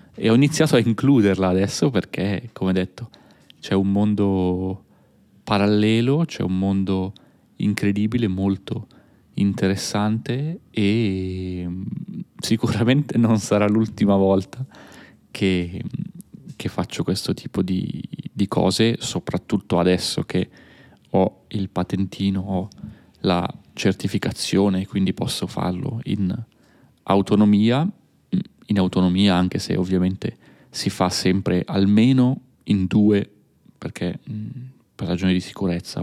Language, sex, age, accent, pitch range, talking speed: Italian, male, 30-49, native, 95-115 Hz, 105 wpm